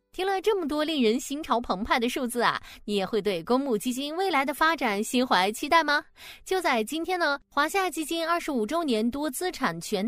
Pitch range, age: 210-310 Hz, 20-39